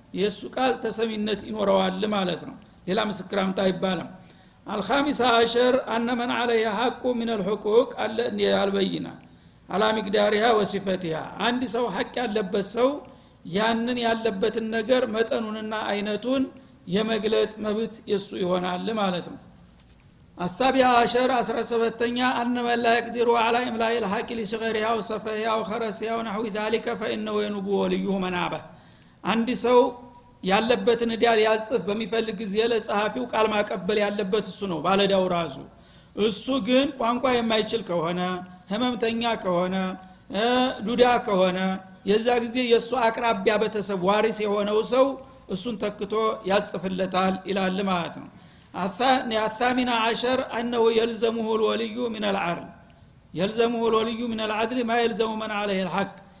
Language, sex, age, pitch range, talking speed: Amharic, male, 50-69, 200-235 Hz, 110 wpm